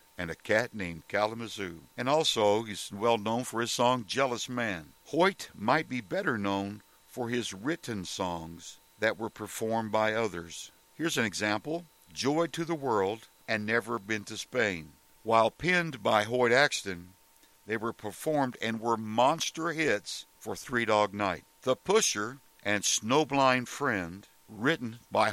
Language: English